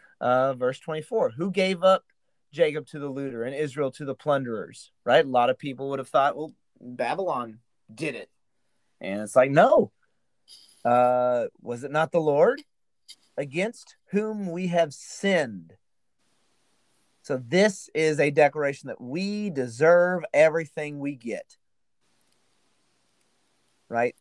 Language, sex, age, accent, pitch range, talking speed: English, male, 30-49, American, 125-170 Hz, 135 wpm